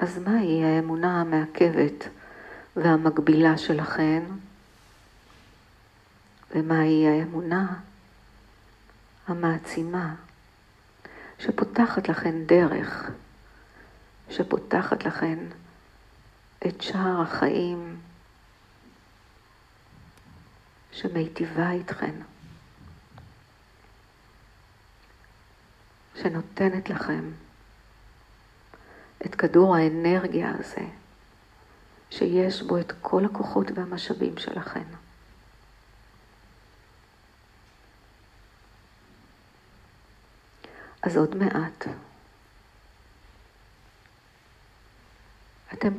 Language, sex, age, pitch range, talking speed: Hebrew, female, 50-69, 105-170 Hz, 45 wpm